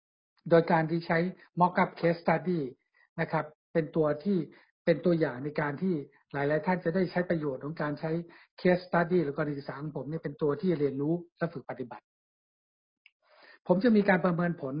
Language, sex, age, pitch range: Thai, male, 60-79, 145-180 Hz